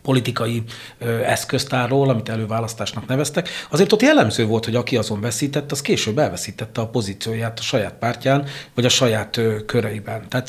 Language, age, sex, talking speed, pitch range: Hungarian, 40-59, male, 155 wpm, 115-135 Hz